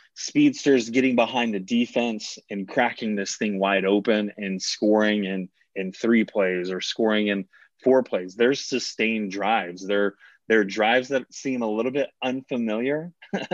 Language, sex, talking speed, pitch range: English, male, 155 wpm, 100-125 Hz